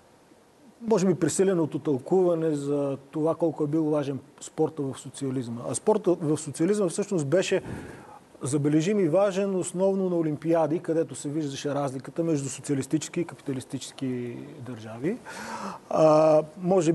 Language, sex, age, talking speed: Bulgarian, male, 40-59, 120 wpm